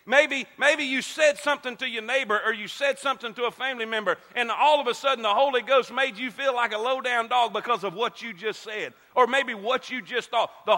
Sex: male